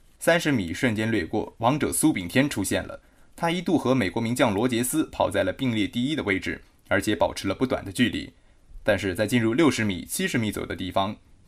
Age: 20-39